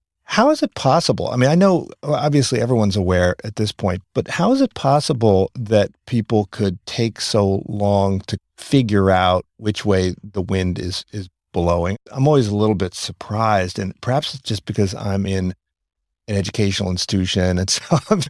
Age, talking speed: 50-69, 175 wpm